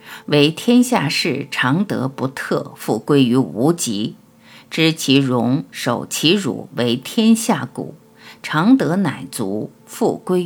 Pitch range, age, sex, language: 130-200 Hz, 50-69, female, Chinese